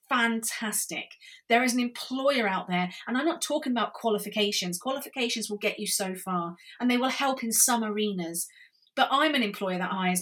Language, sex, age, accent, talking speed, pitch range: English, female, 30-49, British, 190 wpm, 185-225 Hz